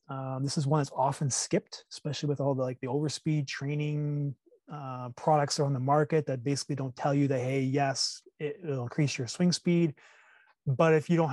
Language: English